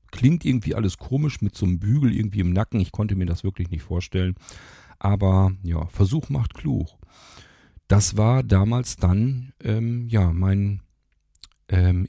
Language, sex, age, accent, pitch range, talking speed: German, male, 50-69, German, 90-120 Hz, 150 wpm